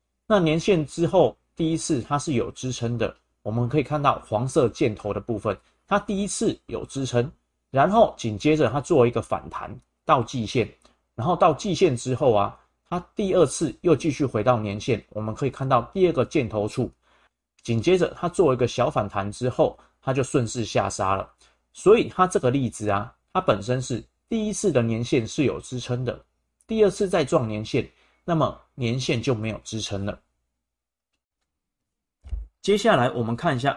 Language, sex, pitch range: Chinese, male, 110-150 Hz